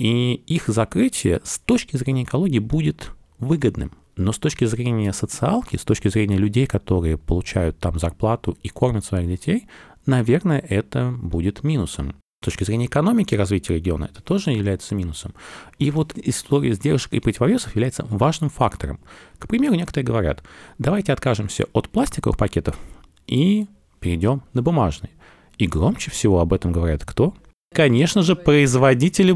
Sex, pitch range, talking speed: male, 95-140 Hz, 145 wpm